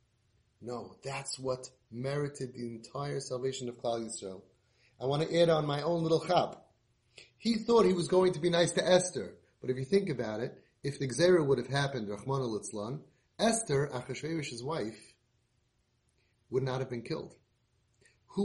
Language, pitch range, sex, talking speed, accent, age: English, 130-180 Hz, male, 170 wpm, American, 30-49